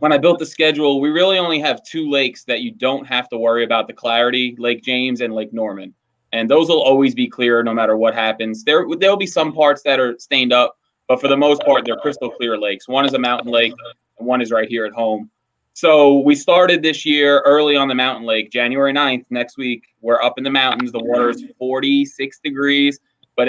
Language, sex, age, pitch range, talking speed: English, male, 20-39, 120-155 Hz, 230 wpm